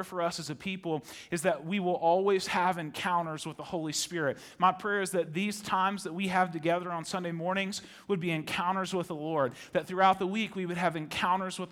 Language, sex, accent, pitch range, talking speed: English, male, American, 170-195 Hz, 225 wpm